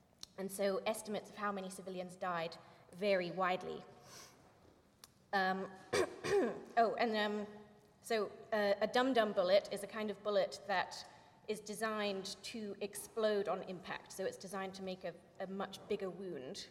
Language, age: English, 30-49